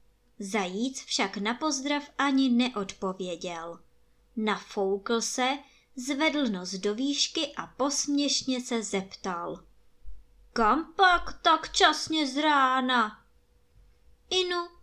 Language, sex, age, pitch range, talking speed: Czech, male, 20-39, 205-295 Hz, 95 wpm